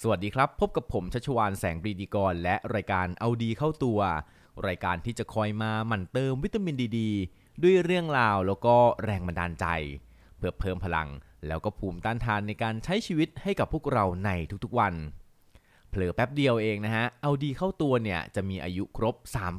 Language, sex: Thai, male